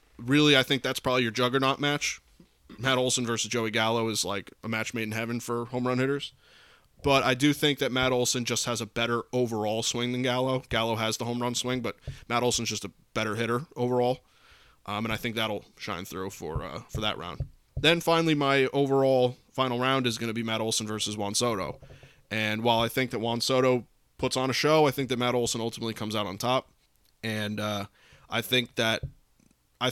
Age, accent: 20-39, American